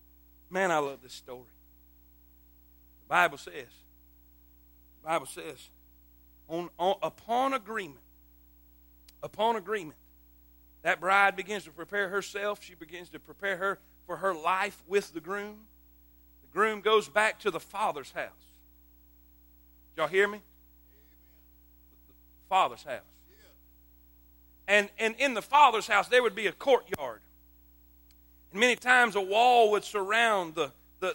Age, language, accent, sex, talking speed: 40-59, English, American, male, 125 wpm